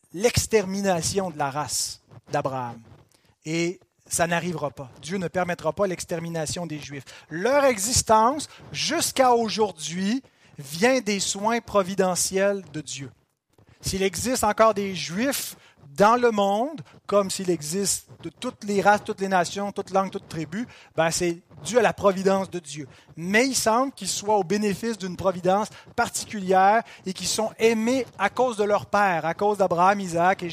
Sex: male